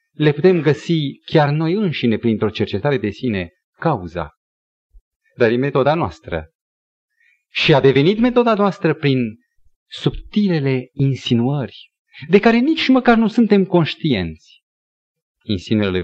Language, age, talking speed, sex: Romanian, 30-49, 115 wpm, male